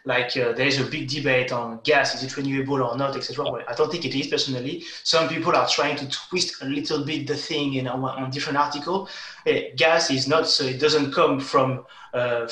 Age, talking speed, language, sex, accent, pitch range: 30-49, 230 wpm, English, male, French, 130-160 Hz